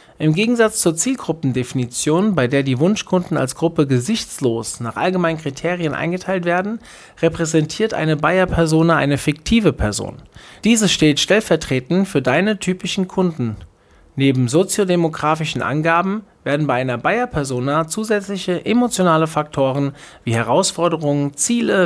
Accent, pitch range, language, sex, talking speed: German, 130-180 Hz, German, male, 115 wpm